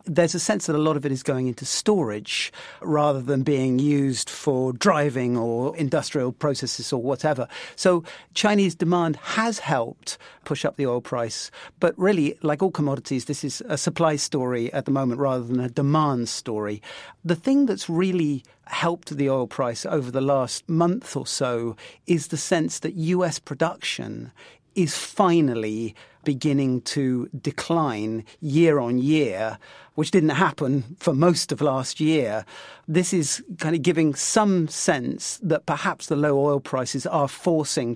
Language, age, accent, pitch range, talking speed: English, 50-69, British, 130-165 Hz, 160 wpm